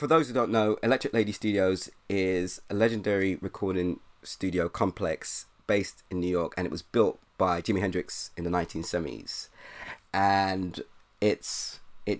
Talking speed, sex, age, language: 150 wpm, male, 20-39, English